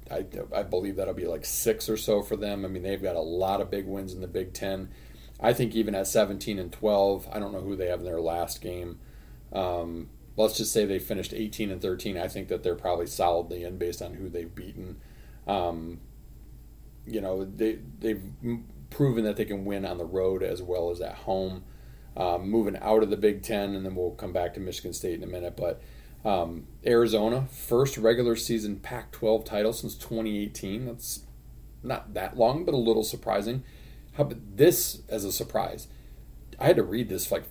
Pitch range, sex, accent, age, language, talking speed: 95-115 Hz, male, American, 30-49, English, 205 wpm